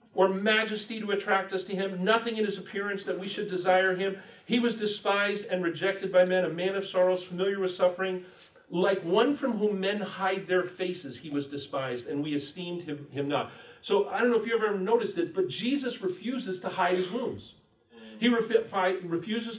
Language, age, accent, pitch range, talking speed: English, 40-59, American, 145-210 Hz, 200 wpm